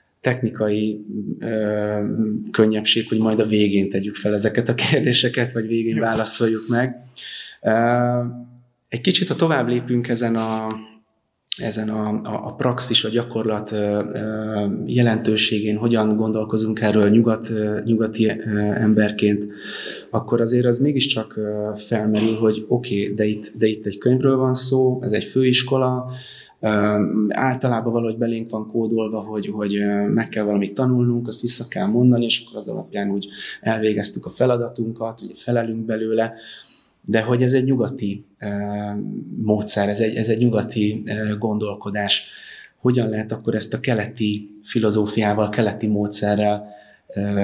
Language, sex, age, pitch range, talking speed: Hungarian, male, 30-49, 105-115 Hz, 140 wpm